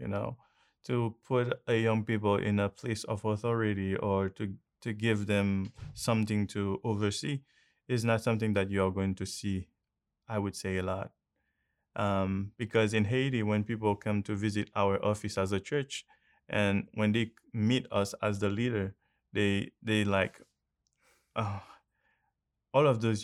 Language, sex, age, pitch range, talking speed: English, male, 20-39, 95-110 Hz, 165 wpm